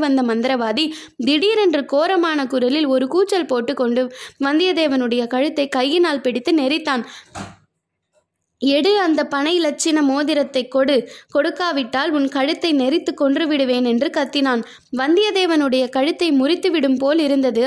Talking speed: 105 wpm